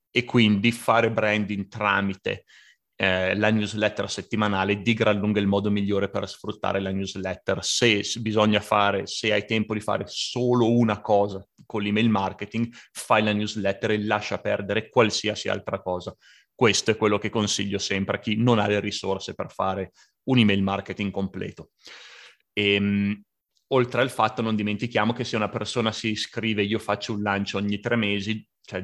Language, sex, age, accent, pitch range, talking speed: Italian, male, 30-49, native, 100-110 Hz, 170 wpm